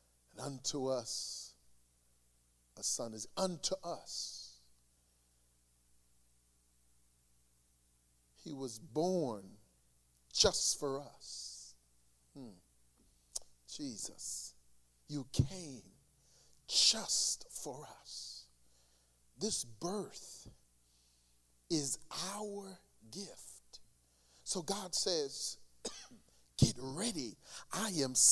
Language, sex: English, male